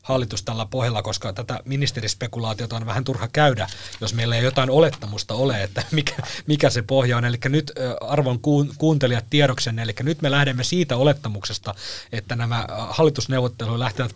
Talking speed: 155 wpm